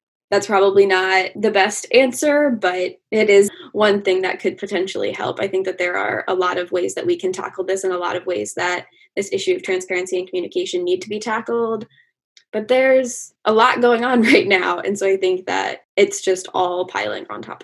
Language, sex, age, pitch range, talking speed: English, female, 10-29, 190-280 Hz, 220 wpm